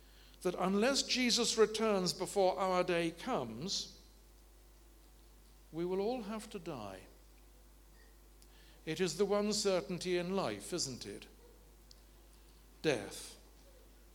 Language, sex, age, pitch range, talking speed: English, male, 60-79, 140-195 Hz, 100 wpm